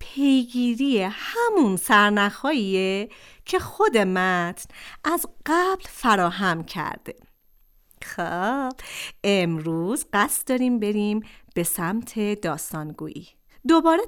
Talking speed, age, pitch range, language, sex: 80 wpm, 40-59, 180-270 Hz, Persian, female